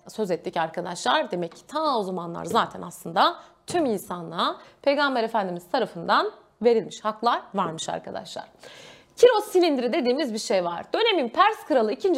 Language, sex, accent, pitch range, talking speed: Turkish, female, native, 220-355 Hz, 145 wpm